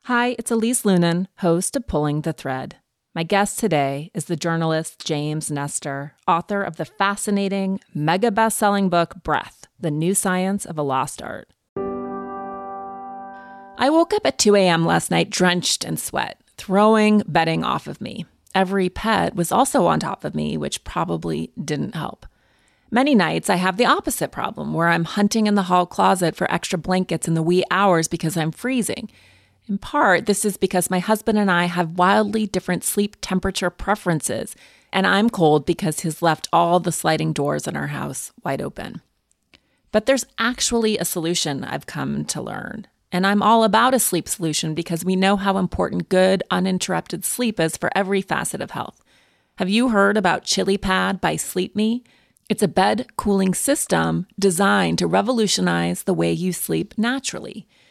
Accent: American